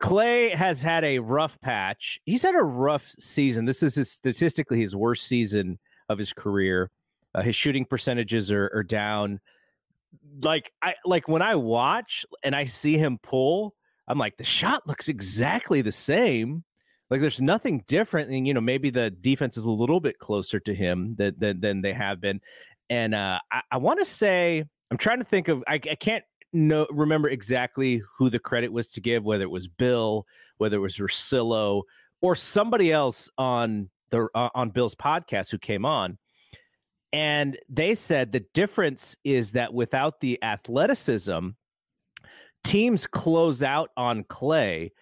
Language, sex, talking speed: English, male, 170 wpm